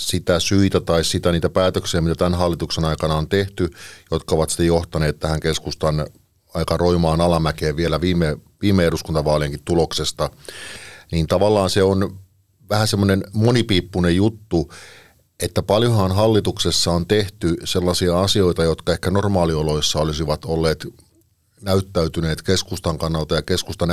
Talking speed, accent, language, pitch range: 130 wpm, native, Finnish, 80-95 Hz